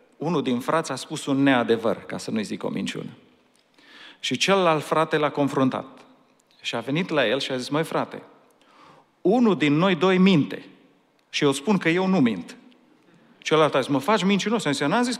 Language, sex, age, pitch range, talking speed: Romanian, male, 40-59, 140-205 Hz, 195 wpm